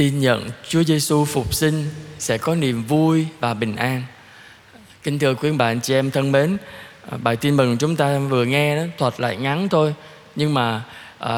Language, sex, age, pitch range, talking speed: Vietnamese, male, 20-39, 125-180 Hz, 185 wpm